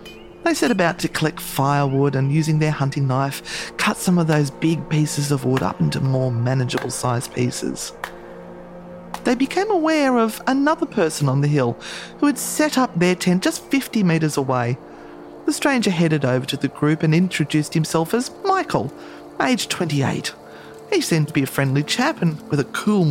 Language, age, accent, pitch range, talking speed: English, 30-49, Australian, 140-185 Hz, 175 wpm